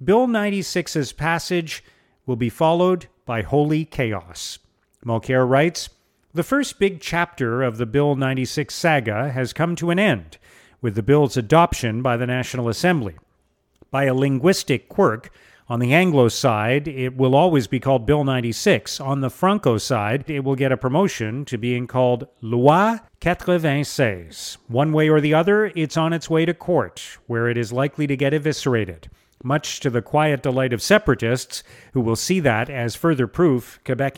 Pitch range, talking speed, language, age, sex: 120-155 Hz, 165 wpm, English, 40-59, male